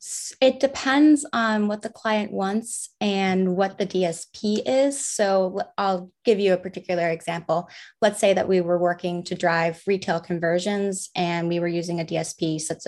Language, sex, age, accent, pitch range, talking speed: English, female, 20-39, American, 175-220 Hz, 170 wpm